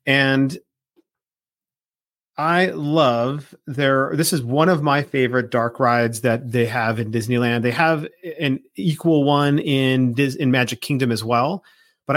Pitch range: 125-145 Hz